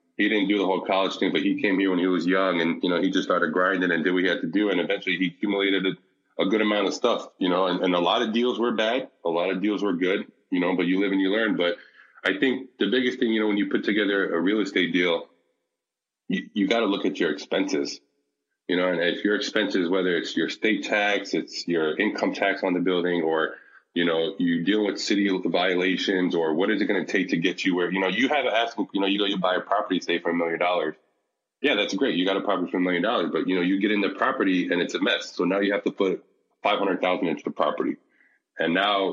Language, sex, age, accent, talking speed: English, male, 20-39, American, 275 wpm